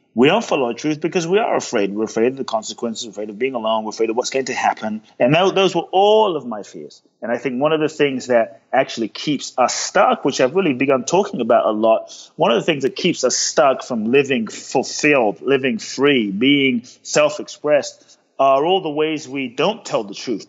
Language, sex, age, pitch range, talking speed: English, male, 30-49, 120-155 Hz, 225 wpm